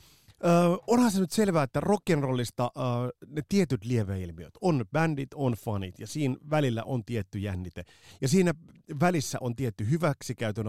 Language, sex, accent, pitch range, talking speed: Finnish, male, native, 105-150 Hz, 150 wpm